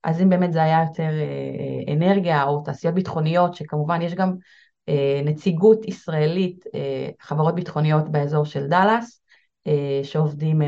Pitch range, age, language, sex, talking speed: 150-185 Hz, 30-49, Hebrew, female, 120 wpm